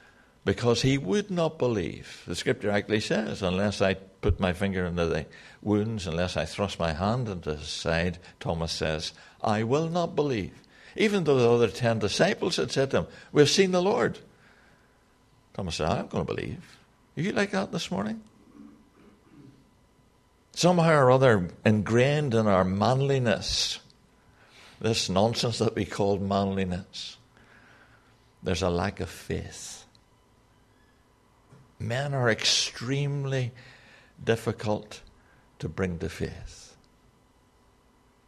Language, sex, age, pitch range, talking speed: English, male, 60-79, 95-125 Hz, 130 wpm